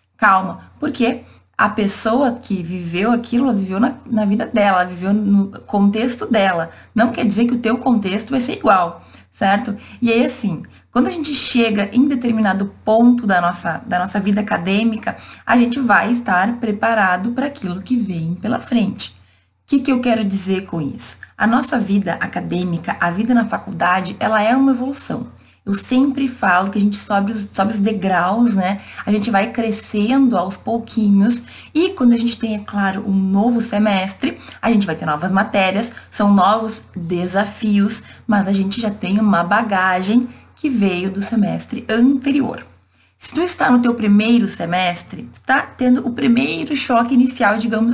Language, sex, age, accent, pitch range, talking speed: Portuguese, female, 20-39, Brazilian, 195-240 Hz, 175 wpm